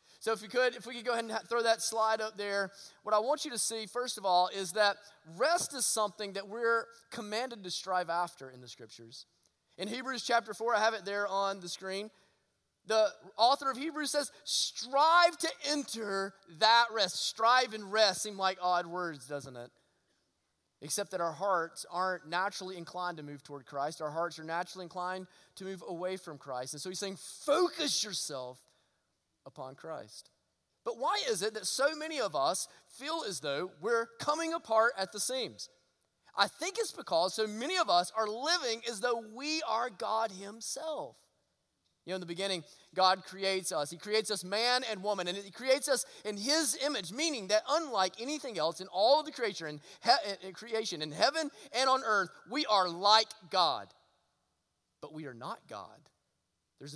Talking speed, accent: 190 wpm, American